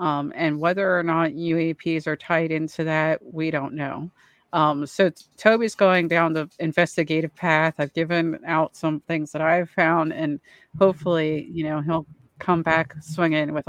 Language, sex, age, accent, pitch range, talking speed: English, female, 30-49, American, 155-175 Hz, 165 wpm